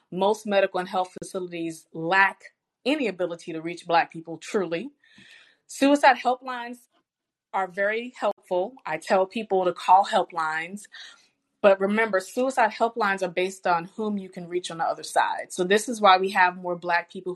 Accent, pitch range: American, 175-210 Hz